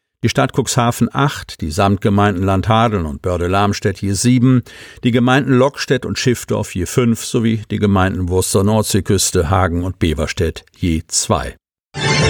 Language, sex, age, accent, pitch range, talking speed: German, male, 50-69, German, 95-120 Hz, 135 wpm